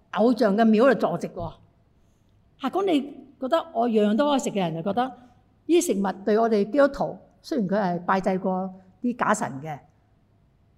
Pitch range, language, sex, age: 190-270 Hz, Chinese, female, 60-79